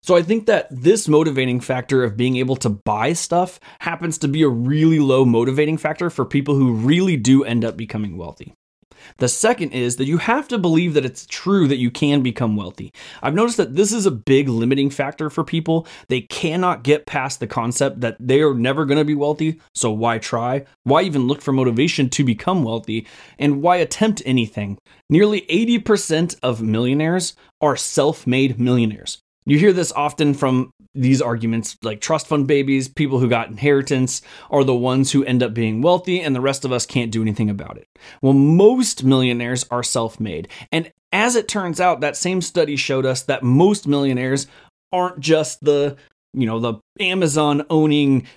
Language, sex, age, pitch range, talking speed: English, male, 20-39, 125-160 Hz, 185 wpm